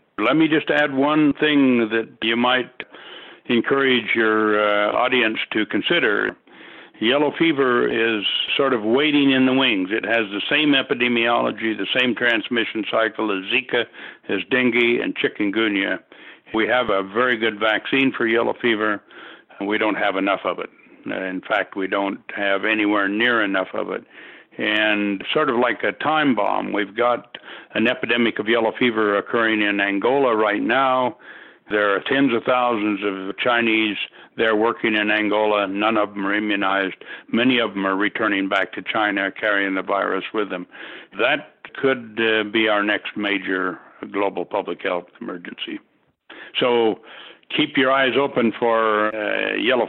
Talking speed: 160 wpm